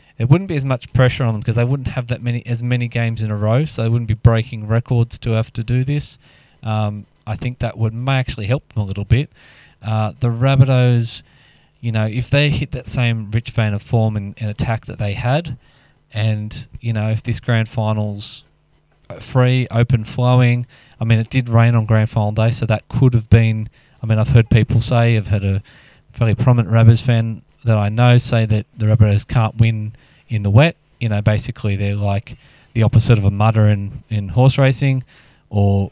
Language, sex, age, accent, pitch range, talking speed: English, male, 20-39, Australian, 110-125 Hz, 210 wpm